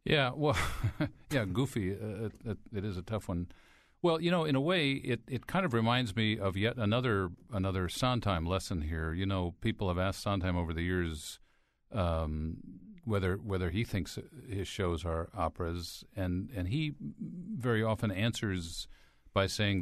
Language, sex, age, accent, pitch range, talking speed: English, male, 50-69, American, 90-115 Hz, 170 wpm